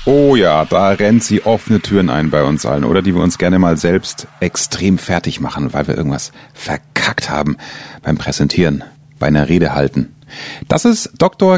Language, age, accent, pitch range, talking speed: German, 30-49, German, 90-140 Hz, 180 wpm